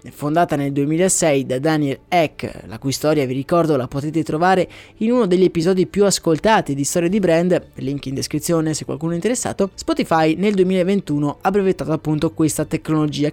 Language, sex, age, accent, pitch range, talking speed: Italian, male, 20-39, native, 150-195 Hz, 175 wpm